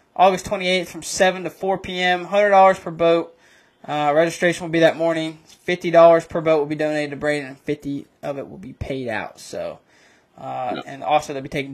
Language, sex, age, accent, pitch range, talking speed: English, male, 20-39, American, 155-200 Hz, 200 wpm